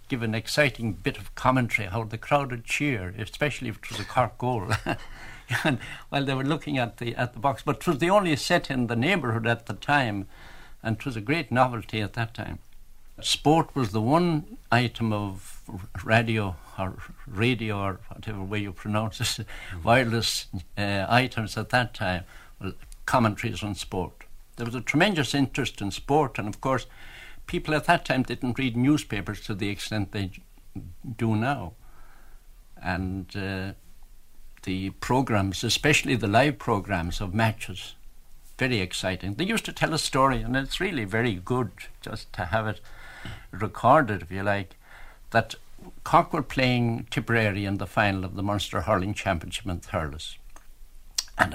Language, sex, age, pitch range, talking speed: English, male, 60-79, 100-130 Hz, 170 wpm